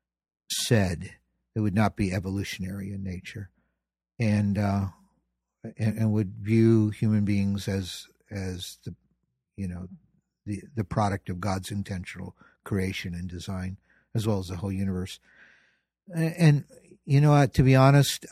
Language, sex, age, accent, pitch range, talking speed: English, male, 60-79, American, 95-115 Hz, 145 wpm